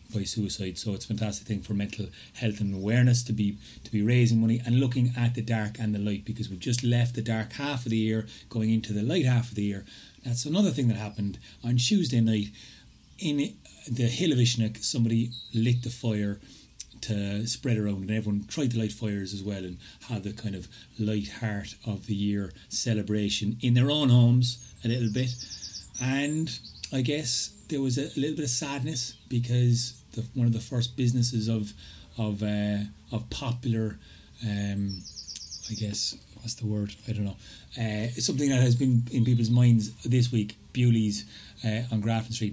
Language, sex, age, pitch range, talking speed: English, male, 30-49, 105-125 Hz, 190 wpm